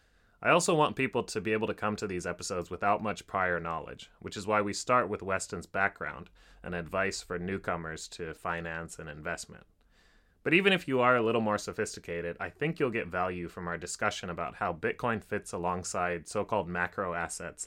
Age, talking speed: 30-49, 195 wpm